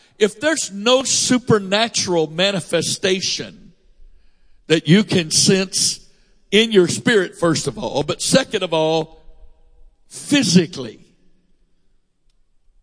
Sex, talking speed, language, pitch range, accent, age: male, 95 wpm, English, 155-200 Hz, American, 60-79